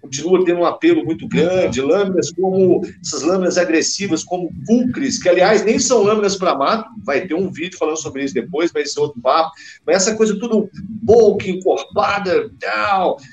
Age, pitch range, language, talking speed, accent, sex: 50-69, 155-210 Hz, Portuguese, 175 wpm, Brazilian, male